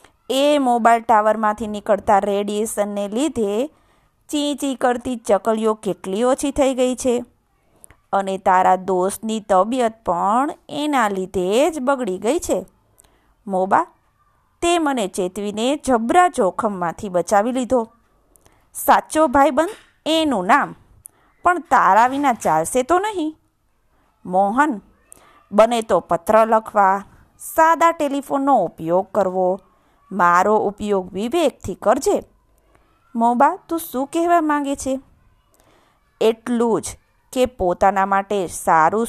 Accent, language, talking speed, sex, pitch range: native, Gujarati, 105 wpm, female, 205-280 Hz